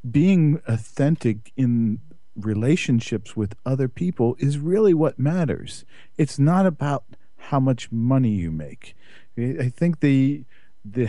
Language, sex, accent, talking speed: English, male, American, 125 wpm